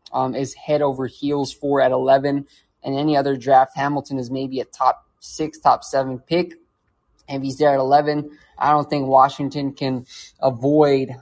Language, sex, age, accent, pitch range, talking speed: English, male, 20-39, American, 130-145 Hz, 175 wpm